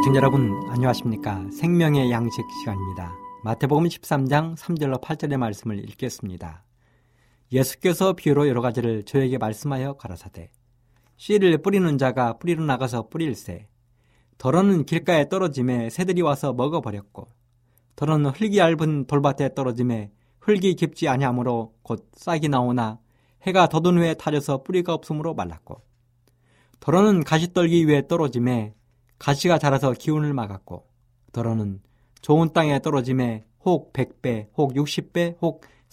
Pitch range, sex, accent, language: 120-155 Hz, male, native, Korean